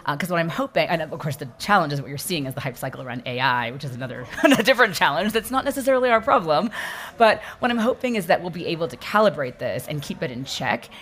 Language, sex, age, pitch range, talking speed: English, female, 30-49, 135-185 Hz, 260 wpm